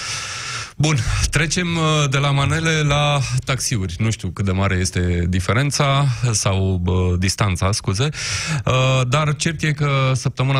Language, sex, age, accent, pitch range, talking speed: Romanian, male, 20-39, native, 110-145 Hz, 135 wpm